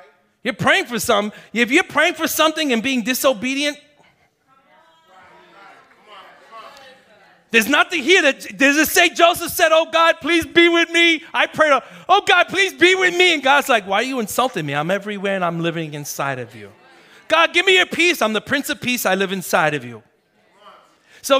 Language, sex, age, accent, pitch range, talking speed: English, male, 30-49, American, 200-315 Hz, 190 wpm